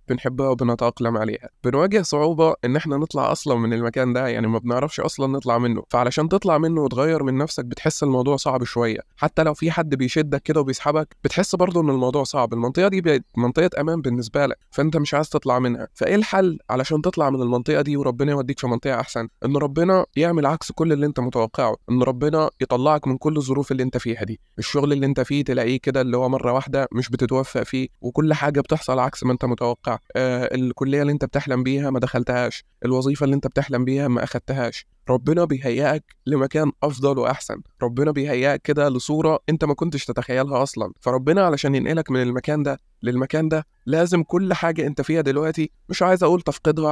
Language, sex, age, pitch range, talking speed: Arabic, male, 20-39, 125-150 Hz, 190 wpm